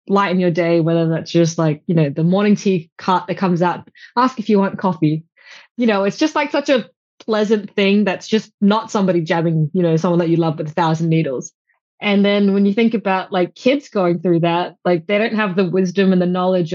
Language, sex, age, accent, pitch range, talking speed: English, female, 20-39, Australian, 175-210 Hz, 235 wpm